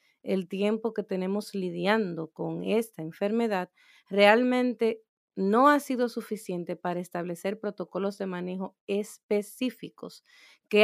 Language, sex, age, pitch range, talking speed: Spanish, female, 40-59, 175-215 Hz, 110 wpm